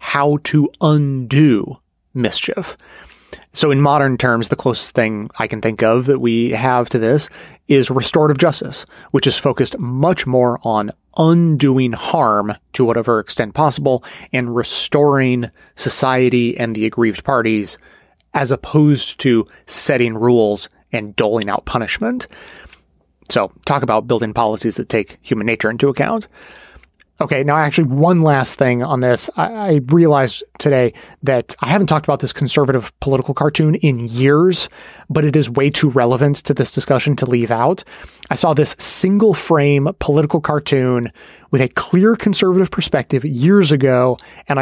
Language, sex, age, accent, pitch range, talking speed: English, male, 30-49, American, 125-155 Hz, 150 wpm